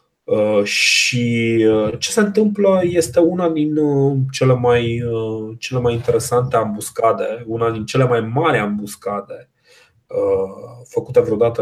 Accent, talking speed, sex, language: native, 105 wpm, male, Romanian